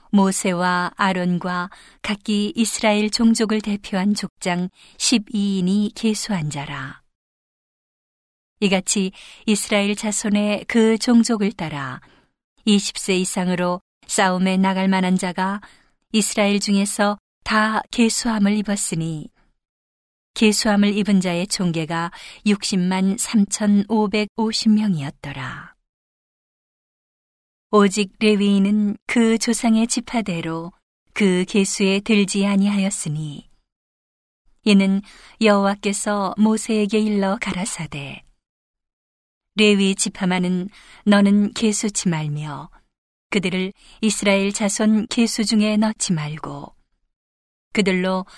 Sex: female